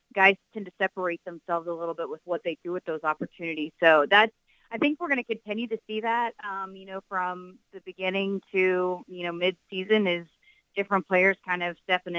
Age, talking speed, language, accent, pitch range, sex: 30-49, 210 wpm, English, American, 170-195 Hz, female